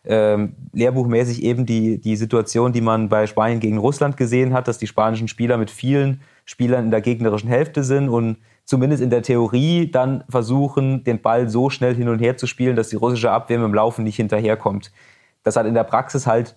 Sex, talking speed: male, 200 wpm